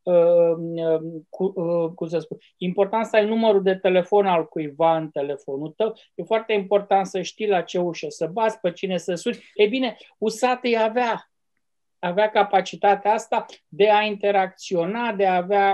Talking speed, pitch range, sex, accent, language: 155 wpm, 180-230 Hz, male, native, Romanian